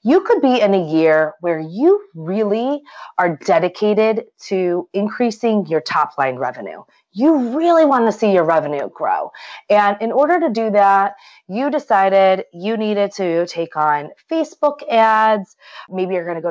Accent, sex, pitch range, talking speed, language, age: American, female, 175-250 Hz, 160 wpm, English, 30-49